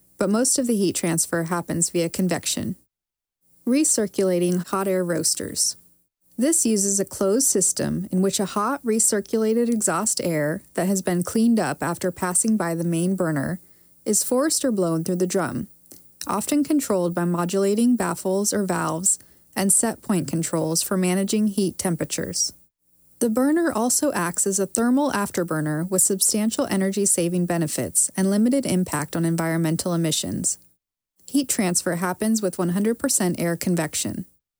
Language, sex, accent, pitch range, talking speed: English, female, American, 165-220 Hz, 145 wpm